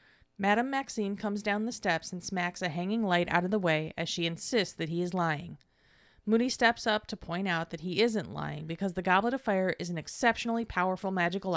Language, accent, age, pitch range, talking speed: English, American, 30-49, 175-215 Hz, 220 wpm